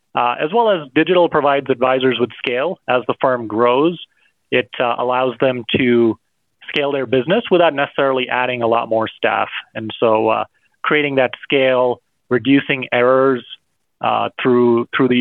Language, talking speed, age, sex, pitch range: English, 160 wpm, 30-49, male, 120-140 Hz